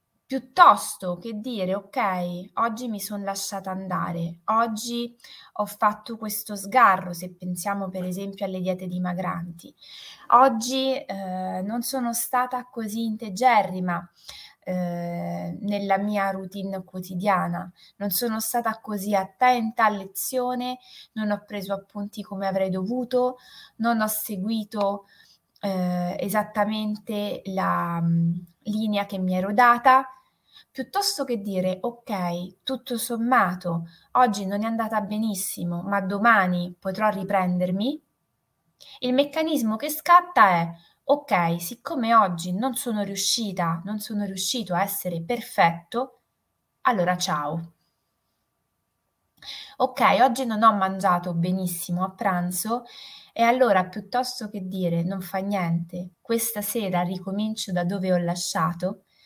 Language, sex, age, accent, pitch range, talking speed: Italian, female, 20-39, native, 185-235 Hz, 115 wpm